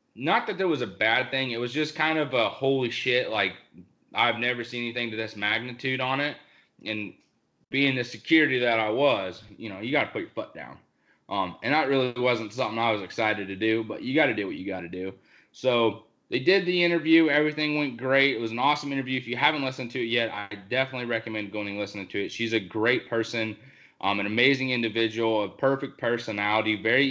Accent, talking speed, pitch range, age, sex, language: American, 225 wpm, 105-130 Hz, 20-39, male, English